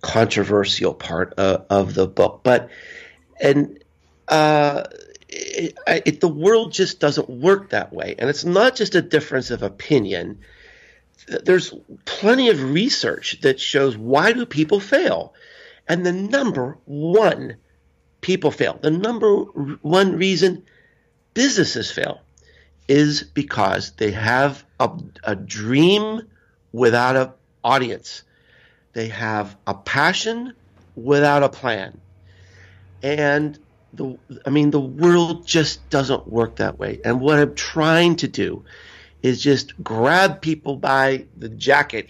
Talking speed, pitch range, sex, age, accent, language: 125 wpm, 120-175 Hz, male, 50-69, American, English